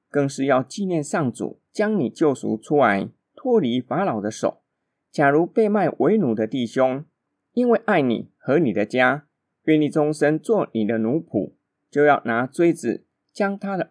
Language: Chinese